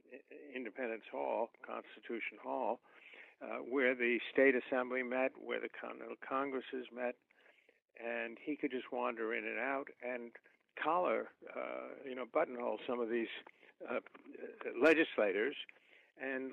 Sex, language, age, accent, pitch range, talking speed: male, English, 60-79, American, 125-180 Hz, 125 wpm